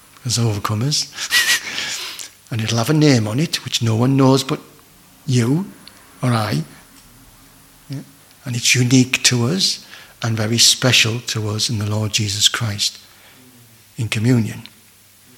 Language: English